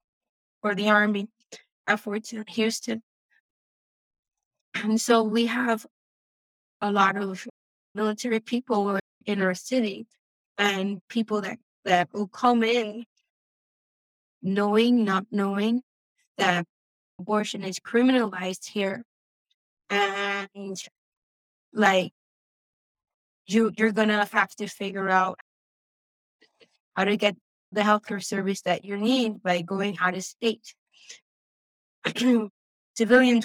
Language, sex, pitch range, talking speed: English, female, 195-220 Hz, 100 wpm